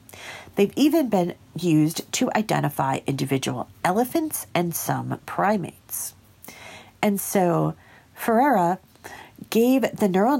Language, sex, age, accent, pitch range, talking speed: English, female, 40-59, American, 160-240 Hz, 100 wpm